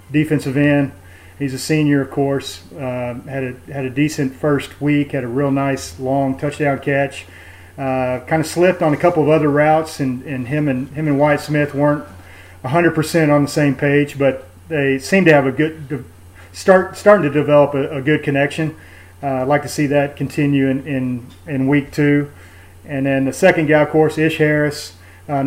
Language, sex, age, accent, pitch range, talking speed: English, male, 40-59, American, 130-145 Hz, 195 wpm